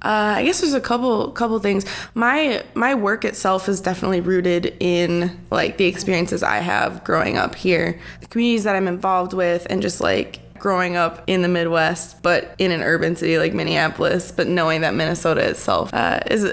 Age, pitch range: 20-39, 175-195 Hz